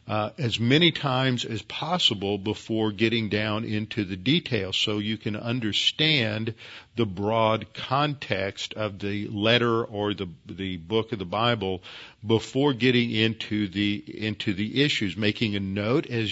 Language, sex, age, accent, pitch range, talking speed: English, male, 50-69, American, 105-120 Hz, 145 wpm